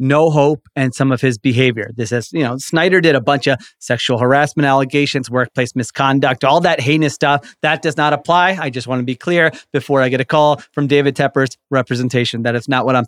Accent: American